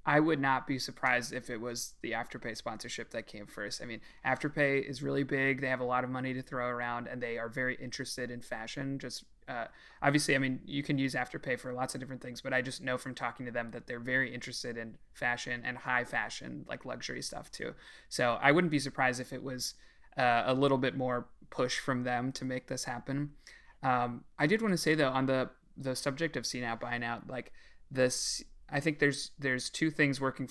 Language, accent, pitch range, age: English, American, 120-135 Hz, 30-49